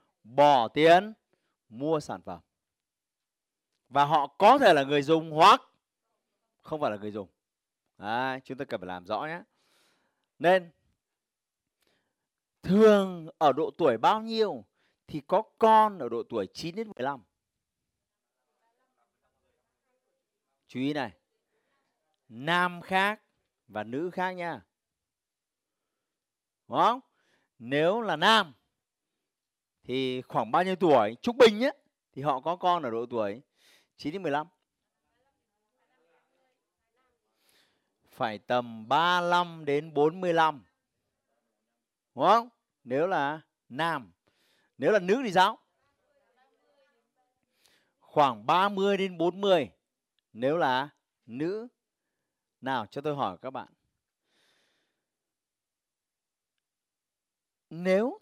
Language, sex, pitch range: Vietnamese, male, 130-215 Hz